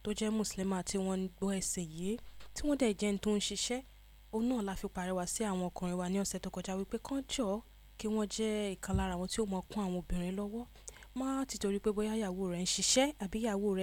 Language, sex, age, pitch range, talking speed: English, female, 20-39, 185-220 Hz, 170 wpm